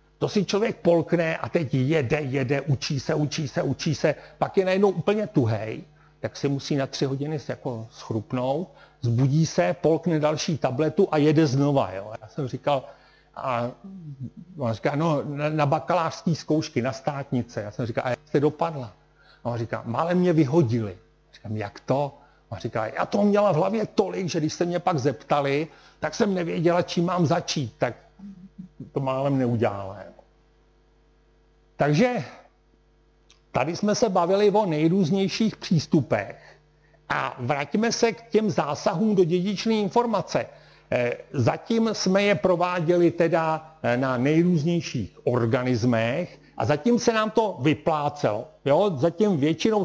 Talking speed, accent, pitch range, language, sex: 145 wpm, native, 135-185 Hz, Czech, male